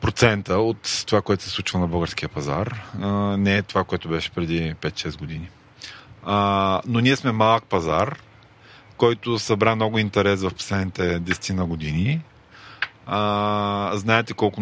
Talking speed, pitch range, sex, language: 135 wpm, 95-115 Hz, male, Bulgarian